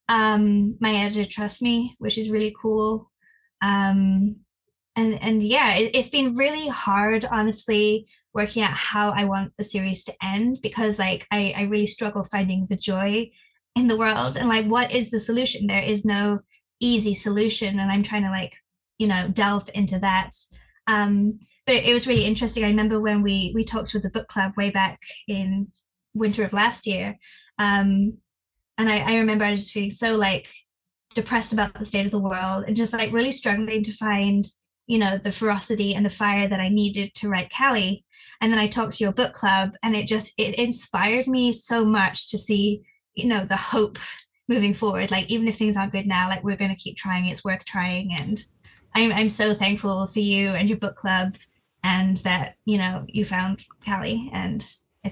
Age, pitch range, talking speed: 20-39, 195-225 Hz, 200 wpm